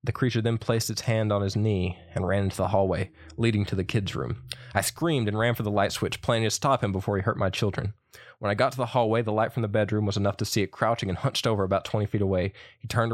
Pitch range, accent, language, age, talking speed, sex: 95-115 Hz, American, English, 20-39, 285 wpm, male